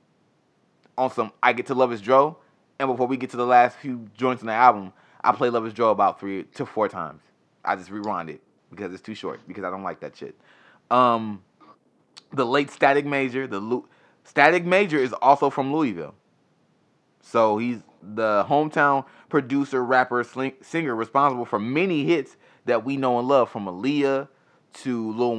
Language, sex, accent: English, male, American